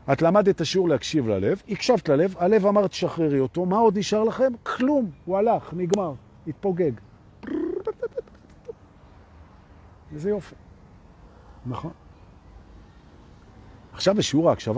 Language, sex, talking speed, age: Hebrew, male, 75 wpm, 50-69